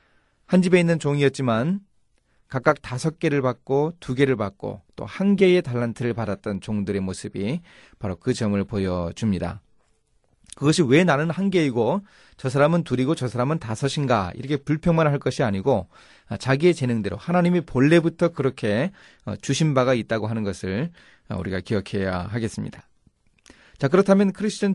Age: 30-49